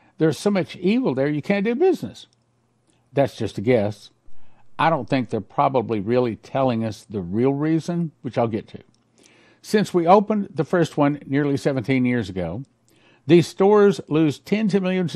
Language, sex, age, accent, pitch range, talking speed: English, male, 60-79, American, 120-160 Hz, 175 wpm